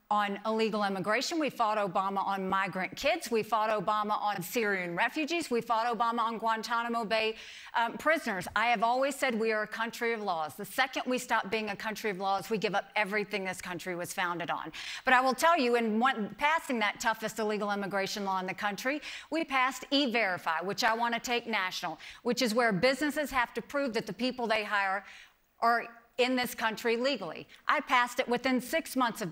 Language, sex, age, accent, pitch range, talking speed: English, female, 50-69, American, 210-260 Hz, 205 wpm